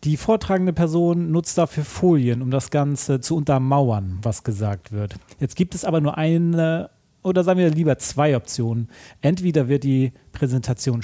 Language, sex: German, male